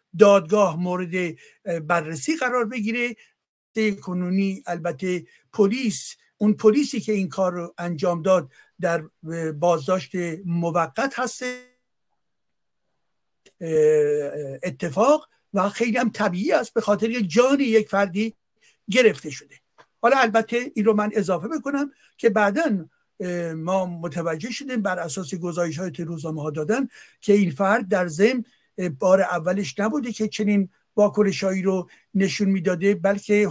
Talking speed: 120 wpm